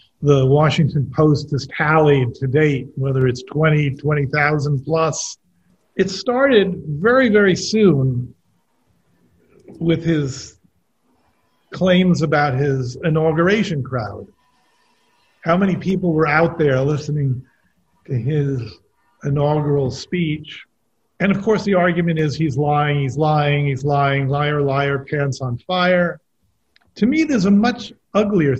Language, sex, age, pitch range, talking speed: English, male, 50-69, 135-180 Hz, 120 wpm